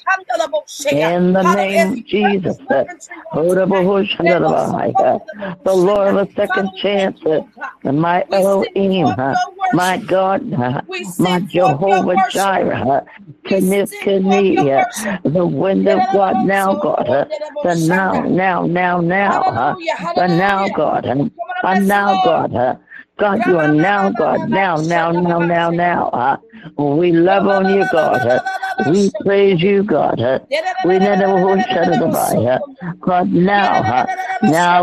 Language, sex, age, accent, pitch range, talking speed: English, female, 60-79, American, 175-200 Hz, 125 wpm